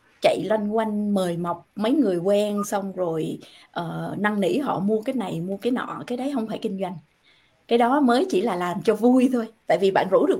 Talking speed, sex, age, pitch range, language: 230 wpm, female, 20-39, 195-270 Hz, Vietnamese